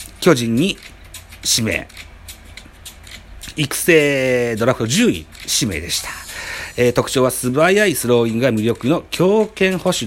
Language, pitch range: Japanese, 95-140 Hz